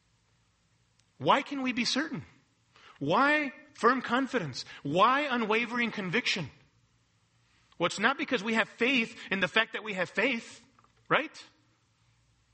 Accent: American